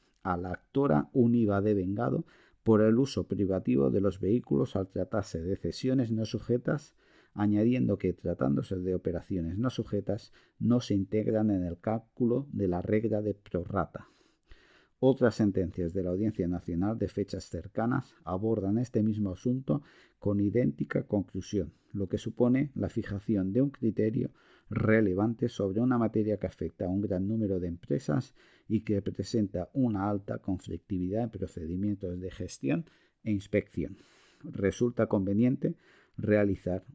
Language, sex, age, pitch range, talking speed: Spanish, male, 50-69, 95-115 Hz, 145 wpm